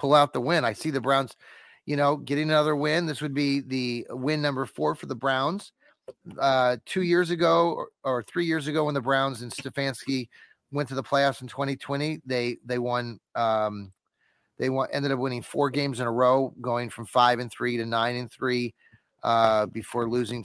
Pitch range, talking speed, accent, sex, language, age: 120-145 Hz, 195 wpm, American, male, English, 30-49